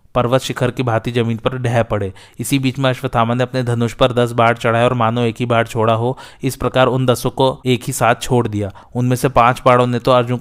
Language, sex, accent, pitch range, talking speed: Hindi, male, native, 115-130 Hz, 250 wpm